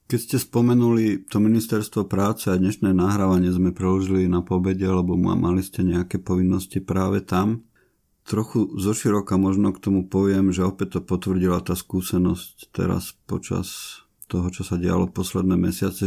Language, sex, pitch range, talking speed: Slovak, male, 90-100 Hz, 155 wpm